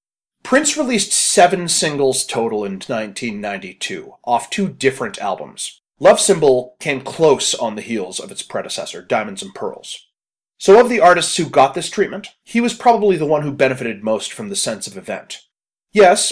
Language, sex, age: English, male, 30-49